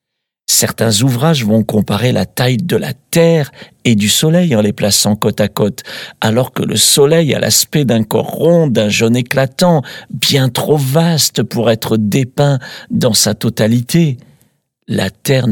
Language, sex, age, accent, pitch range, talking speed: French, male, 50-69, French, 110-150 Hz, 160 wpm